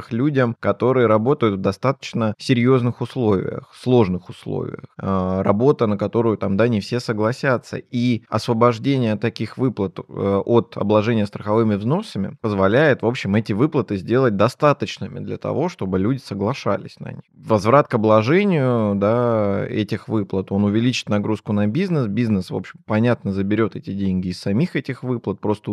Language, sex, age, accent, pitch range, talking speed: Russian, male, 20-39, native, 105-125 Hz, 145 wpm